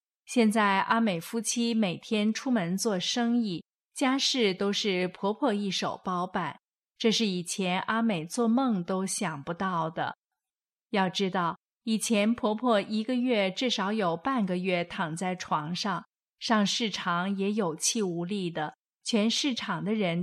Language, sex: Chinese, female